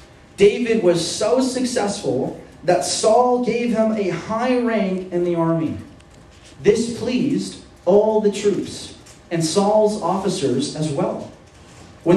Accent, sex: American, male